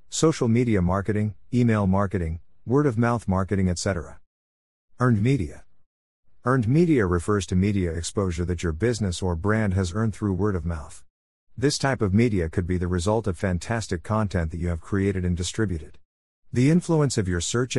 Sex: male